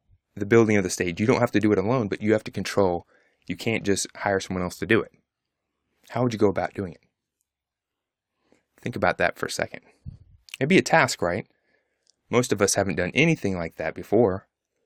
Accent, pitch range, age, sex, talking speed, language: American, 100-135 Hz, 20-39, male, 215 wpm, English